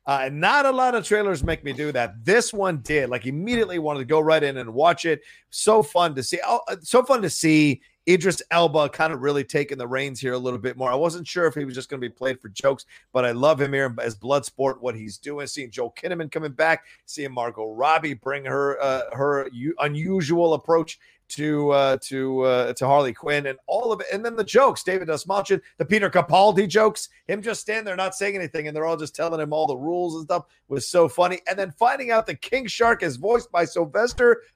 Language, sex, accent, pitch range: English, male, American, 130-180 Hz